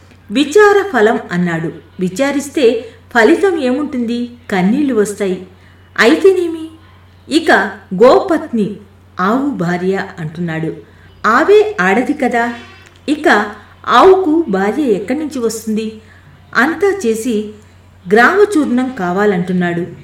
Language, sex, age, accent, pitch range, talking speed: Telugu, female, 50-69, native, 195-290 Hz, 80 wpm